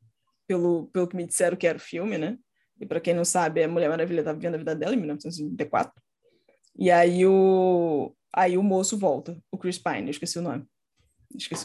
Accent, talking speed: Brazilian, 205 wpm